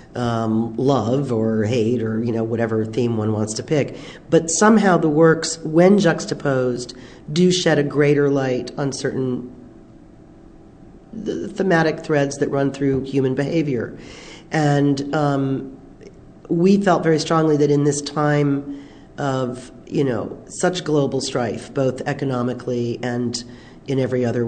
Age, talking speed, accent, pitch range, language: 40-59, 135 wpm, American, 125-150 Hz, English